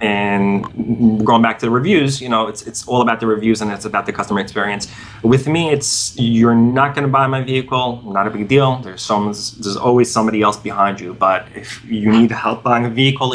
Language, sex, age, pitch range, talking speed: English, male, 20-39, 105-125 Hz, 220 wpm